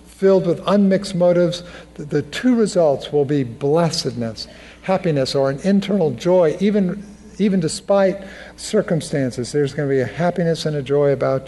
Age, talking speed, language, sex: 50-69, 150 wpm, English, male